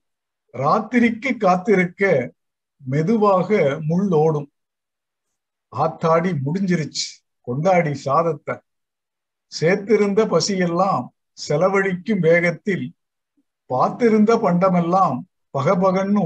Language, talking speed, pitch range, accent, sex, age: Tamil, 60 wpm, 155-200 Hz, native, male, 50-69